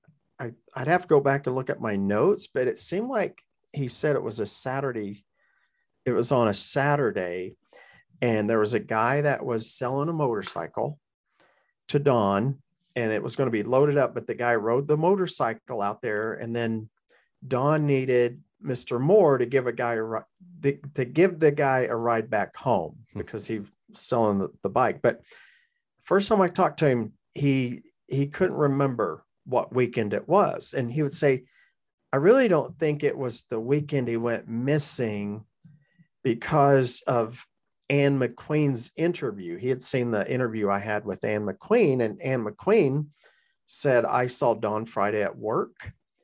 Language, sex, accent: English, male, American